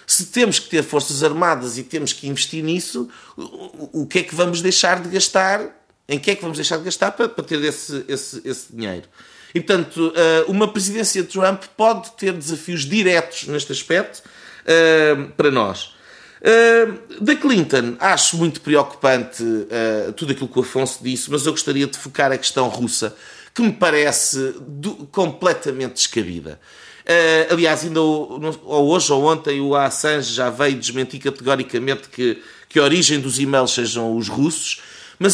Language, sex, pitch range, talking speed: Portuguese, male, 140-210 Hz, 155 wpm